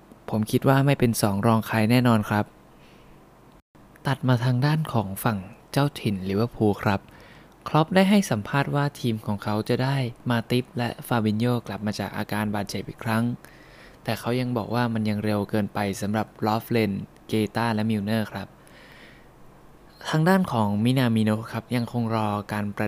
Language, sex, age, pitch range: Thai, male, 20-39, 105-120 Hz